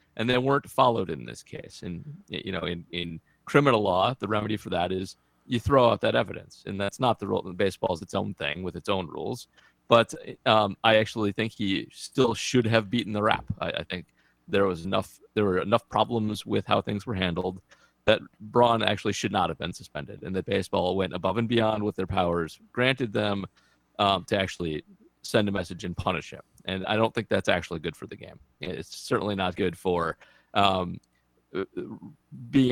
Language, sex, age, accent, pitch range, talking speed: English, male, 30-49, American, 90-110 Hz, 200 wpm